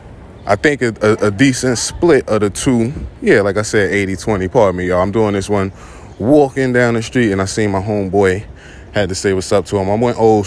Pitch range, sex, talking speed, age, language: 95-115 Hz, male, 235 wpm, 20-39, English